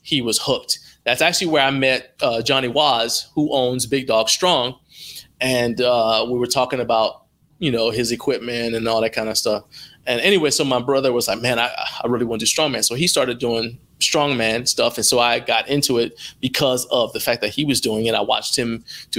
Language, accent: English, American